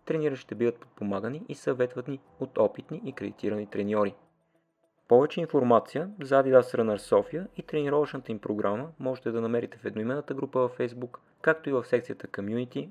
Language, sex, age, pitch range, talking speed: Bulgarian, male, 30-49, 110-150 Hz, 155 wpm